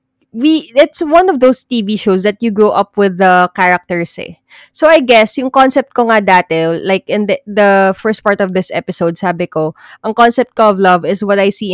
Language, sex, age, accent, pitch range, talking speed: Filipino, female, 20-39, native, 185-255 Hz, 220 wpm